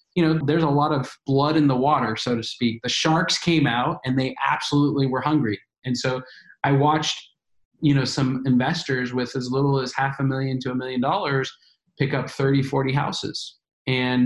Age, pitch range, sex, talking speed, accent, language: 20-39, 125-150 Hz, male, 200 wpm, American, English